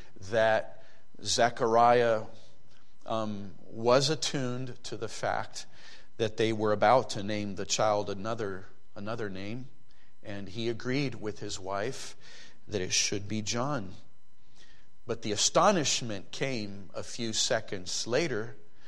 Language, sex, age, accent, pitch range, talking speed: English, male, 40-59, American, 110-145 Hz, 120 wpm